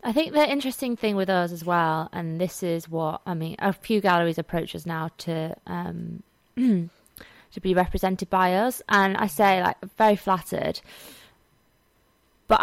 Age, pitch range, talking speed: 20-39, 170-210 Hz, 170 wpm